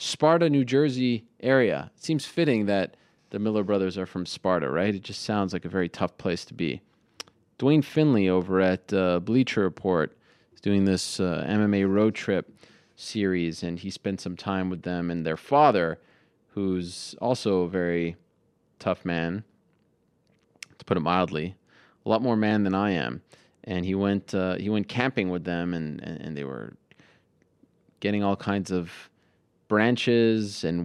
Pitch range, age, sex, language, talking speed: 90-115 Hz, 30-49, male, English, 165 wpm